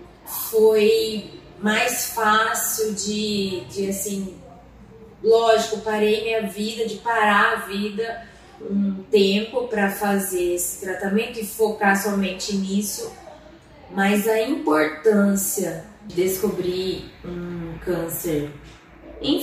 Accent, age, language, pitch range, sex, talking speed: Brazilian, 20-39, Portuguese, 175-215 Hz, female, 100 wpm